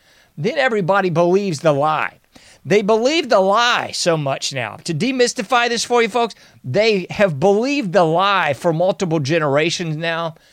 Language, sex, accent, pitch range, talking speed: English, male, American, 150-205 Hz, 155 wpm